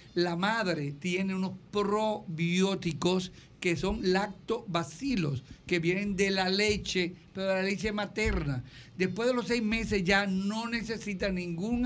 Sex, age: male, 60-79